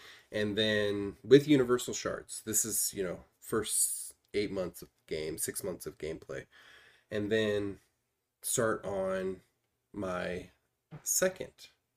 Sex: male